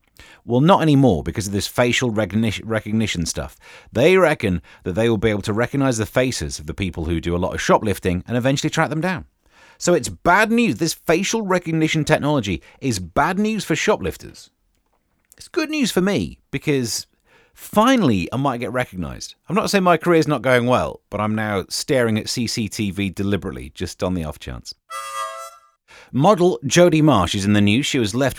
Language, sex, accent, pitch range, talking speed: English, male, British, 105-175 Hz, 185 wpm